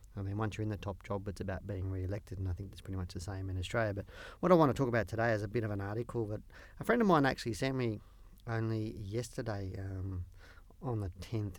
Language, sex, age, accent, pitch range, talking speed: English, male, 40-59, Australian, 95-115 Hz, 260 wpm